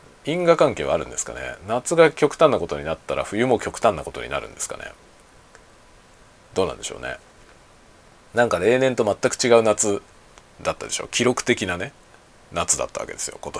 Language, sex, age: Japanese, male, 40-59